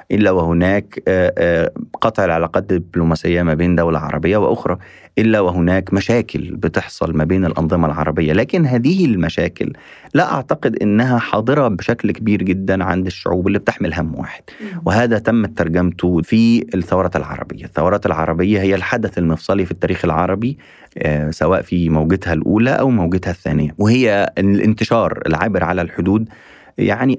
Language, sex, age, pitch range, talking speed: Arabic, male, 30-49, 80-110 Hz, 135 wpm